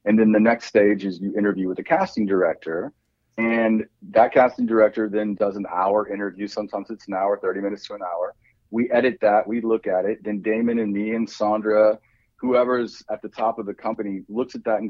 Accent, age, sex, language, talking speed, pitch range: American, 40-59, male, English, 220 wpm, 105-145 Hz